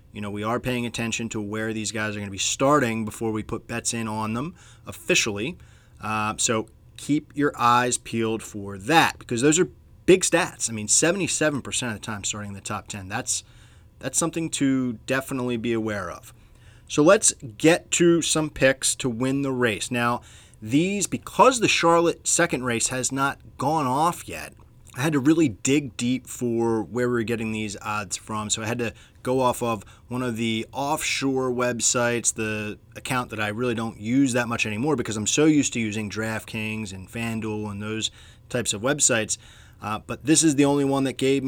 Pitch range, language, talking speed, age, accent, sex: 110-135 Hz, English, 195 wpm, 20-39, American, male